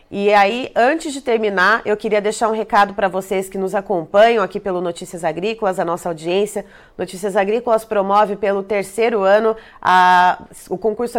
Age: 30-49